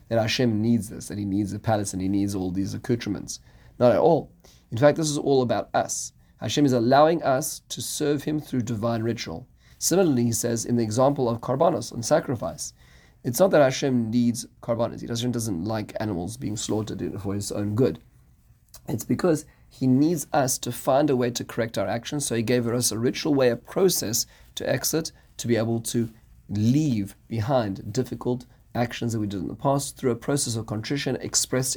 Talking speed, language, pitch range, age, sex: 200 wpm, English, 105-130 Hz, 30-49, male